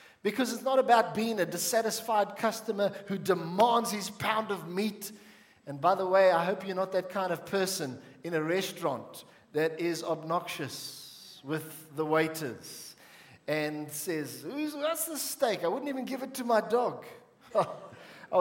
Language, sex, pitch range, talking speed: English, male, 160-225 Hz, 165 wpm